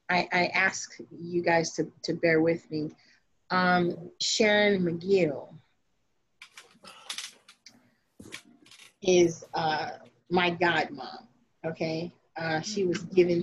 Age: 30-49